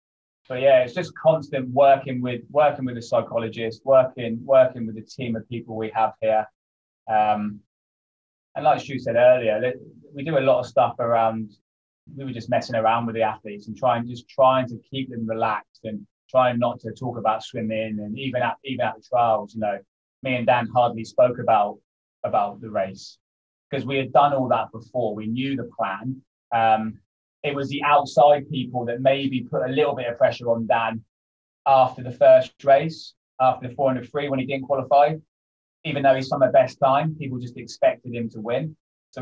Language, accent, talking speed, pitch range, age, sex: English, British, 195 wpm, 110-135 Hz, 20-39, male